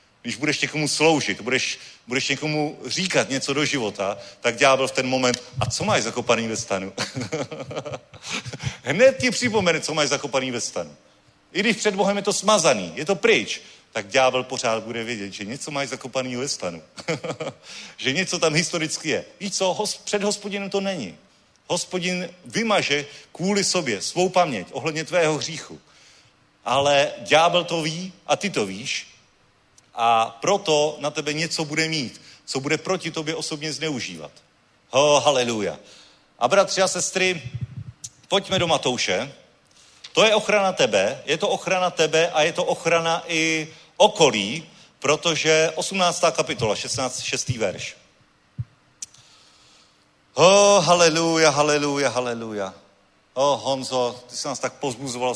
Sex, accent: male, native